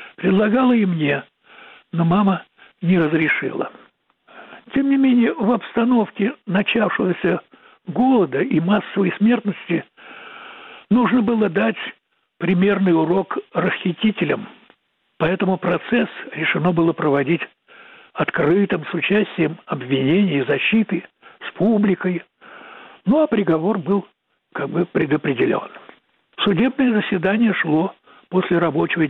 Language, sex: Russian, male